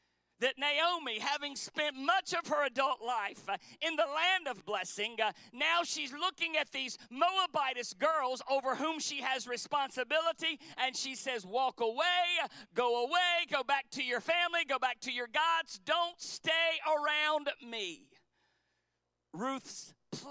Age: 40-59